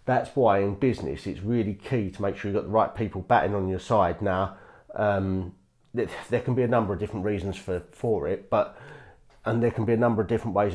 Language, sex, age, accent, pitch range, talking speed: English, male, 40-59, British, 95-115 Hz, 235 wpm